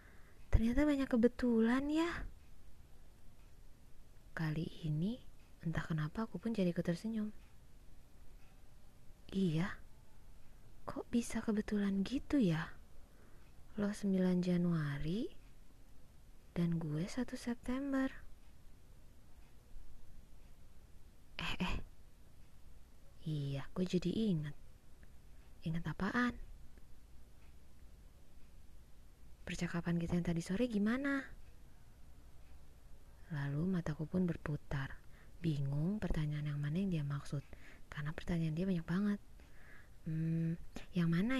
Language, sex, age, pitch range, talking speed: Indonesian, female, 20-39, 145-200 Hz, 85 wpm